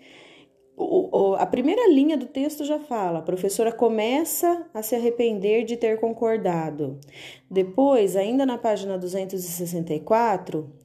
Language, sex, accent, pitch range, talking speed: Portuguese, female, Brazilian, 180-255 Hz, 115 wpm